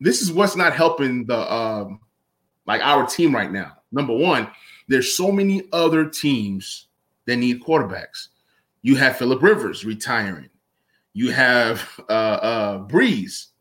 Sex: male